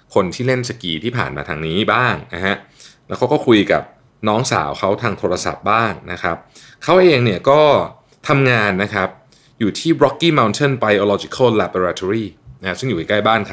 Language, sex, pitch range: Thai, male, 100-135 Hz